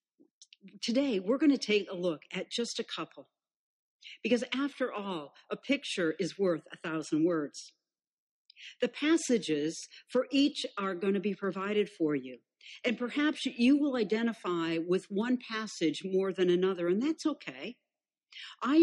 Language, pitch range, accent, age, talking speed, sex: English, 180-265 Hz, American, 60-79, 150 wpm, female